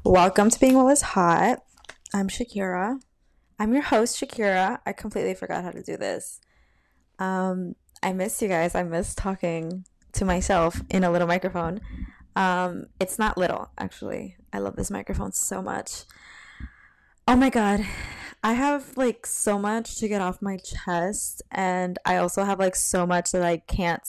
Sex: female